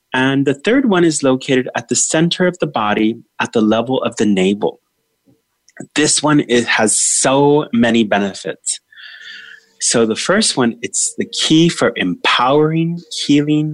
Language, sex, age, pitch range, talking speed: English, male, 30-49, 110-155 Hz, 150 wpm